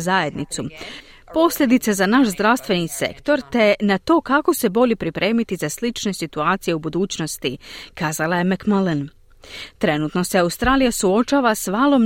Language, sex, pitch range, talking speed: Croatian, female, 175-250 Hz, 135 wpm